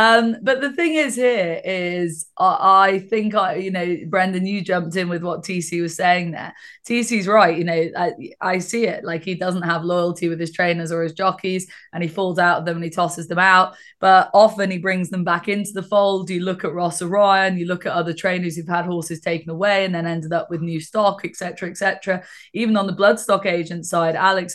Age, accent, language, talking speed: 20-39, British, English, 230 wpm